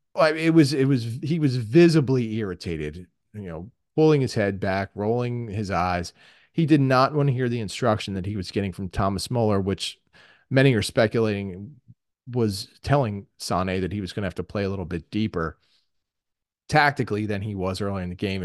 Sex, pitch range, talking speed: male, 95-130 Hz, 190 wpm